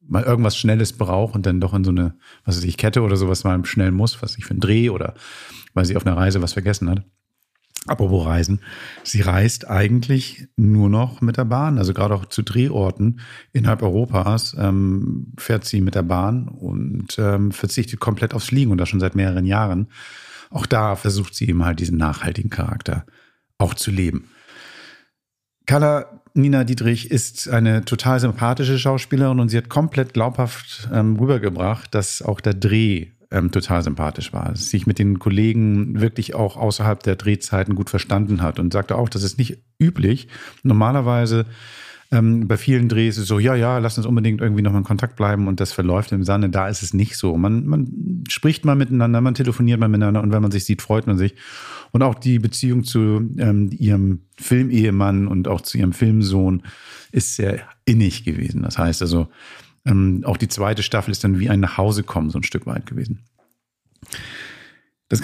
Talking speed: 190 wpm